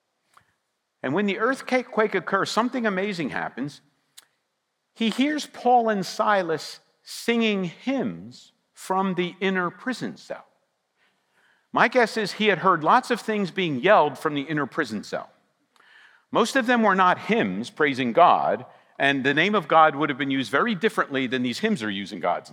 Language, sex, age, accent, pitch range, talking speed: English, male, 50-69, American, 175-240 Hz, 160 wpm